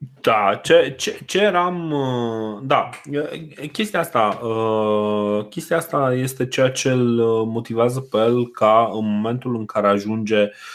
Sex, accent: male, native